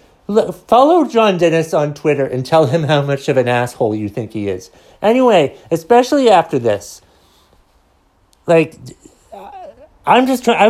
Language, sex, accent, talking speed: English, male, American, 130 wpm